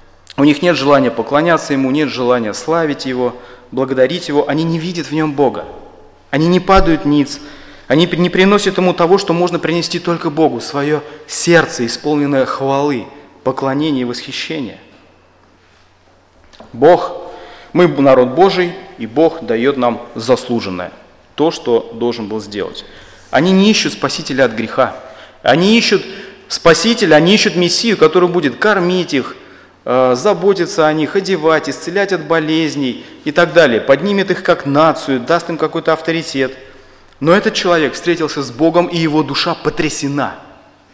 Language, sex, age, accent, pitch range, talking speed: Russian, male, 30-49, native, 125-170 Hz, 140 wpm